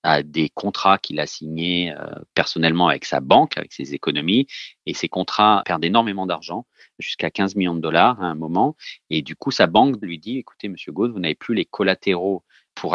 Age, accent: 40-59, French